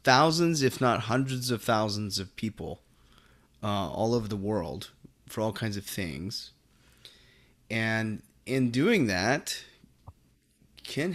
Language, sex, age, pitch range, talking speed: English, male, 30-49, 105-125 Hz, 125 wpm